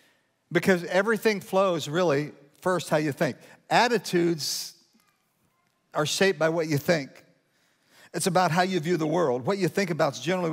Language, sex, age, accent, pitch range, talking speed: English, male, 50-69, American, 150-190 Hz, 160 wpm